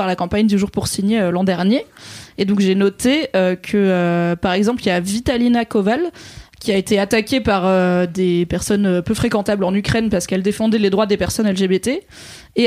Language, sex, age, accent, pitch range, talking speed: French, female, 20-39, French, 190-240 Hz, 215 wpm